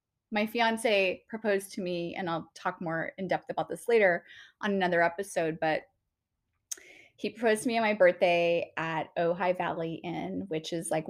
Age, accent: 20-39, American